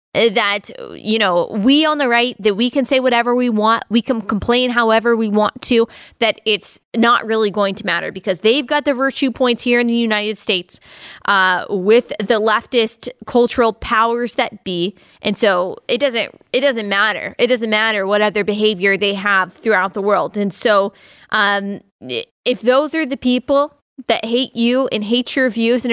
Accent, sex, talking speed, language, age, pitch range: American, female, 185 wpm, English, 20-39, 205-245 Hz